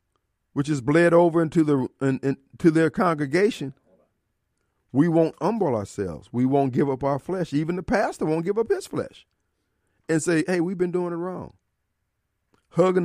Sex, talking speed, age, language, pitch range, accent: male, 175 wpm, 50-69, English, 135-180 Hz, American